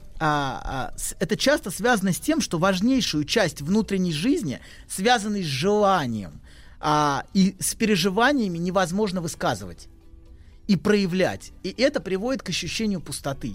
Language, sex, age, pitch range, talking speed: Russian, male, 30-49, 155-225 Hz, 120 wpm